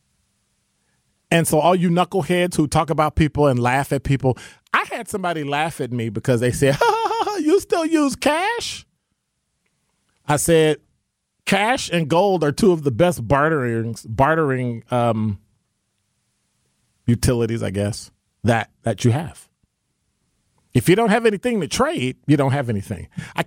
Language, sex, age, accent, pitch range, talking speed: English, male, 40-59, American, 120-175 Hz, 160 wpm